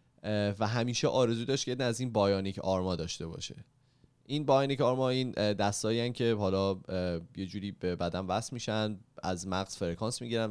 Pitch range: 95-125 Hz